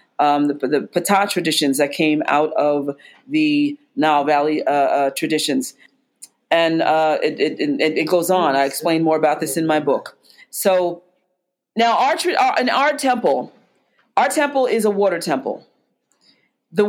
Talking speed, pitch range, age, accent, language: 150 wpm, 185-255 Hz, 40-59, American, English